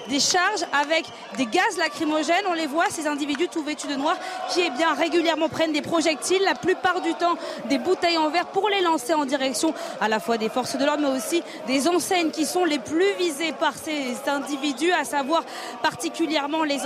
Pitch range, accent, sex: 295-345 Hz, French, female